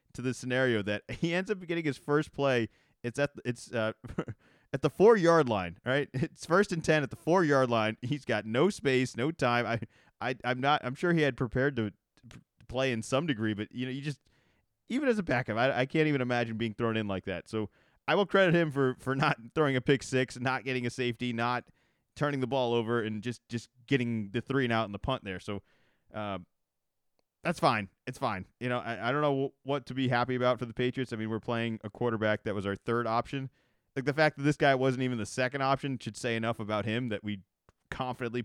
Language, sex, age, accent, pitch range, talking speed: English, male, 30-49, American, 115-145 Hz, 240 wpm